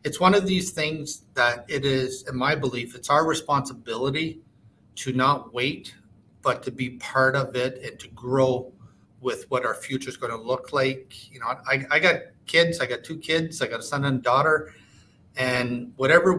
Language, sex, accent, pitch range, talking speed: English, male, American, 125-145 Hz, 200 wpm